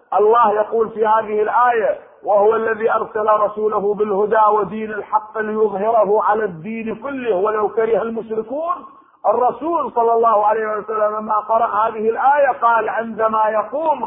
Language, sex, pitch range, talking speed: Arabic, male, 185-245 Hz, 130 wpm